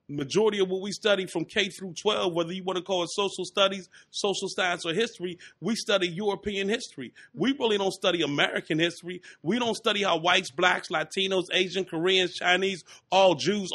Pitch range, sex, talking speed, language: 180-220 Hz, male, 190 wpm, English